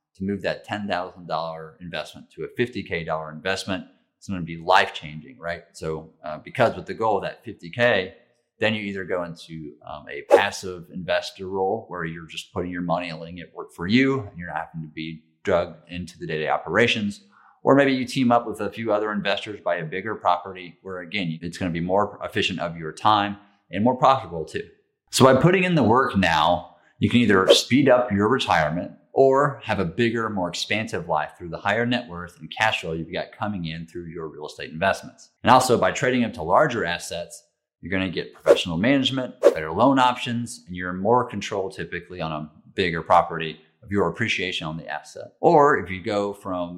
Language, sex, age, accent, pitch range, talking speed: English, male, 30-49, American, 85-110 Hz, 205 wpm